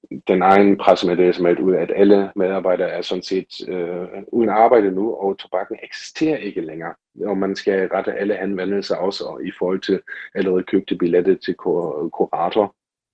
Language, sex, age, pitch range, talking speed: Danish, male, 40-59, 85-95 Hz, 180 wpm